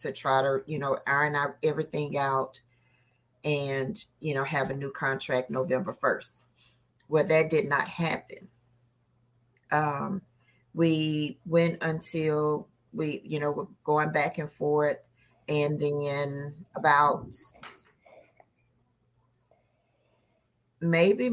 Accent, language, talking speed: American, English, 105 wpm